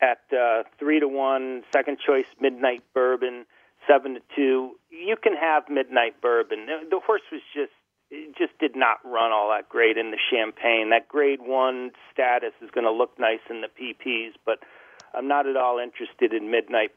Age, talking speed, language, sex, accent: 40-59, 185 wpm, English, male, American